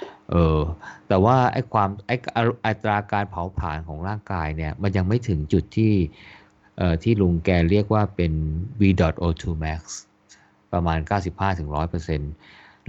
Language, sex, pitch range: Thai, male, 80-100 Hz